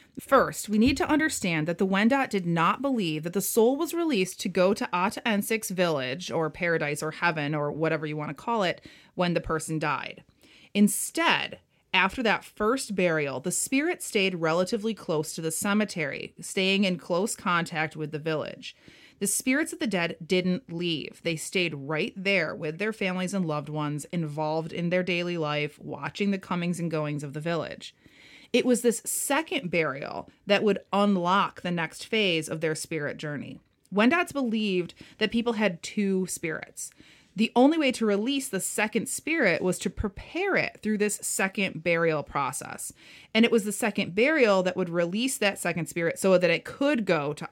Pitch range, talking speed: 165-220 Hz, 180 wpm